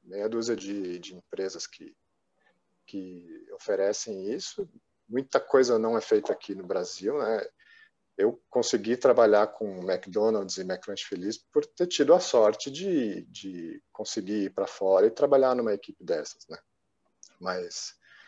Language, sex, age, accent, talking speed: Portuguese, male, 40-59, Brazilian, 145 wpm